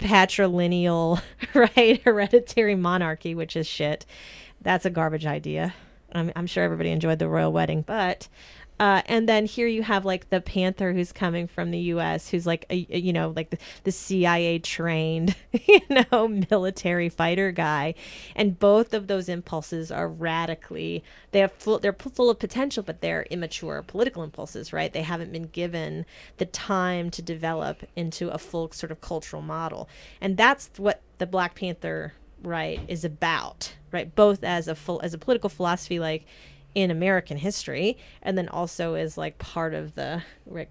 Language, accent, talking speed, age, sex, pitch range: English, American, 170 wpm, 30-49, female, 160-190 Hz